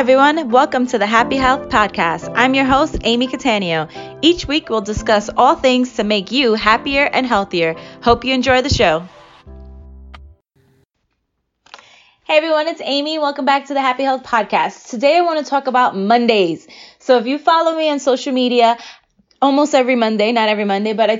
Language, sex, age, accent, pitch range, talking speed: English, female, 20-39, American, 205-265 Hz, 175 wpm